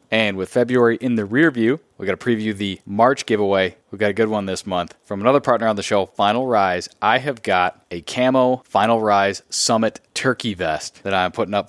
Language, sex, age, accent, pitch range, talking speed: English, male, 20-39, American, 95-115 Hz, 220 wpm